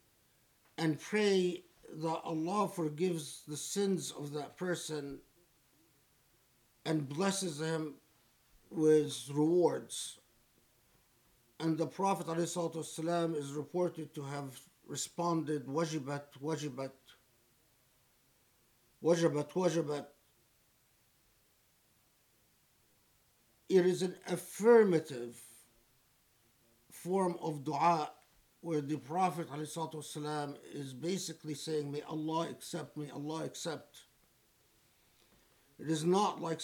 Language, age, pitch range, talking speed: English, 50-69, 135-170 Hz, 85 wpm